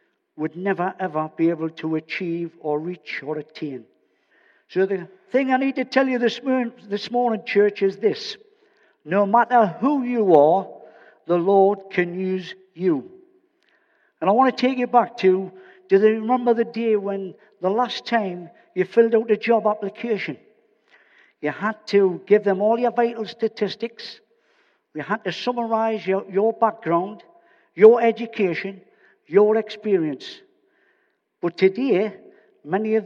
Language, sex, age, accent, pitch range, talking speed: English, male, 60-79, British, 185-245 Hz, 150 wpm